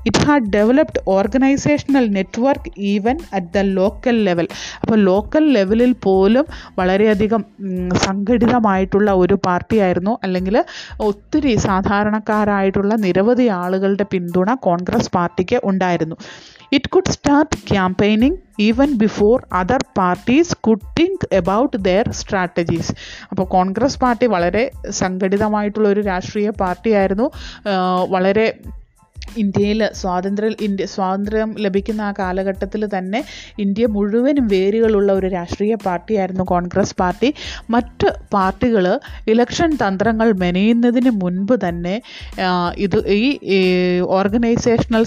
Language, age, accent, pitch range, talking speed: English, 30-49, Indian, 190-230 Hz, 115 wpm